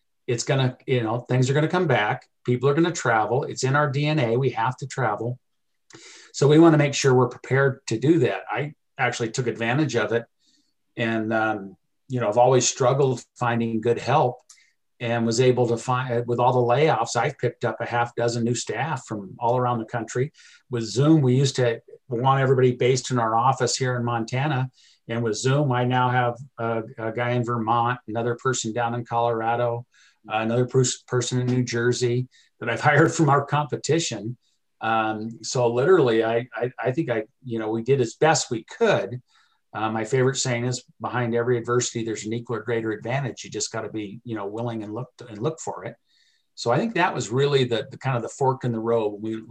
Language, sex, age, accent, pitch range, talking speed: English, male, 50-69, American, 115-130 Hz, 205 wpm